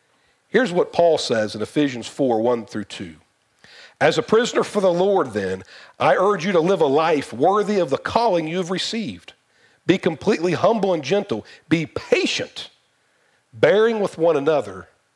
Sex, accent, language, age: male, American, English, 50-69